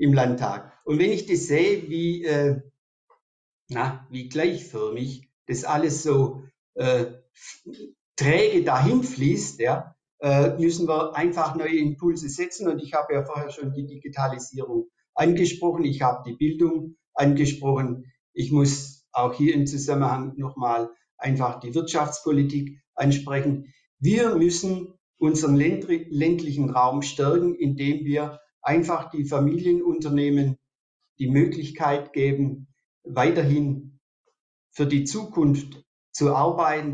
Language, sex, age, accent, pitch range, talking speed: German, male, 50-69, German, 135-160 Hz, 115 wpm